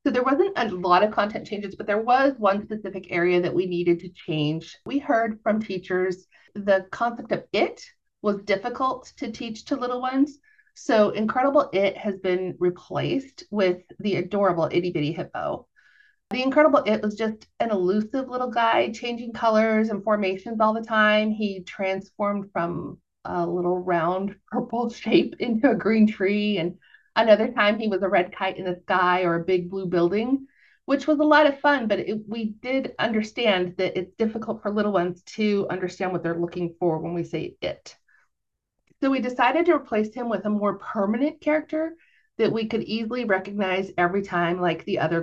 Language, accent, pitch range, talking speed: English, American, 180-245 Hz, 180 wpm